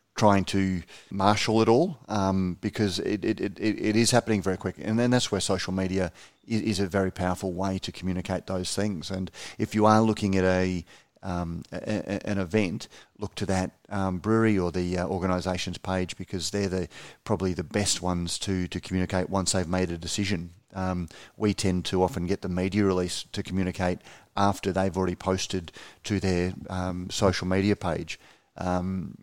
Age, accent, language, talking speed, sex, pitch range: 30-49, Australian, English, 185 wpm, male, 90-105 Hz